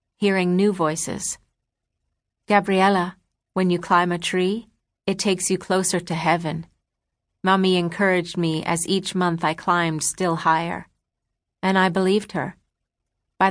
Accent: American